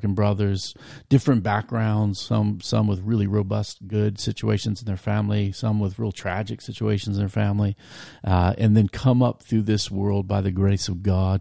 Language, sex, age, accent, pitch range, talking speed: English, male, 40-59, American, 95-115 Hz, 180 wpm